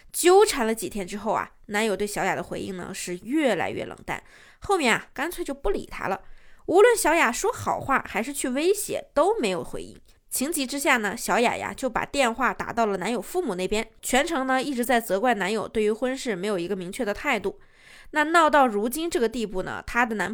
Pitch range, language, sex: 210-290 Hz, Chinese, female